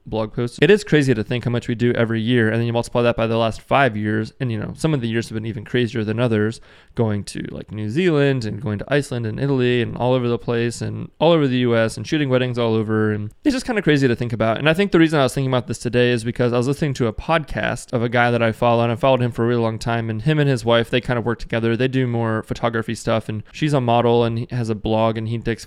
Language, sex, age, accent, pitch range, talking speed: English, male, 20-39, American, 115-130 Hz, 310 wpm